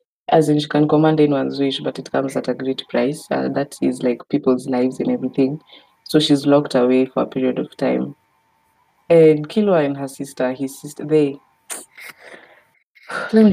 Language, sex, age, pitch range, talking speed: English, female, 20-39, 135-160 Hz, 180 wpm